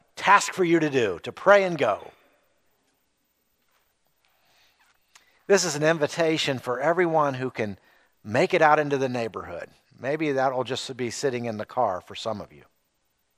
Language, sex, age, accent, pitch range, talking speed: English, male, 50-69, American, 125-185 Hz, 155 wpm